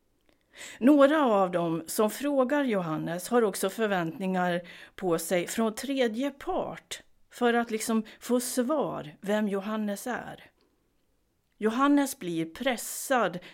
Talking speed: 110 wpm